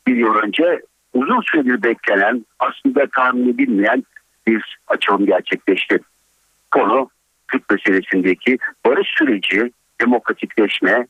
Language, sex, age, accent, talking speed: Turkish, male, 60-79, native, 95 wpm